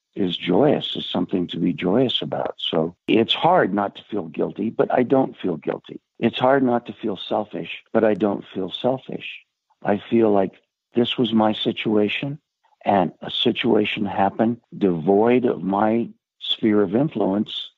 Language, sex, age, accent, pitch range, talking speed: English, male, 60-79, American, 95-115 Hz, 160 wpm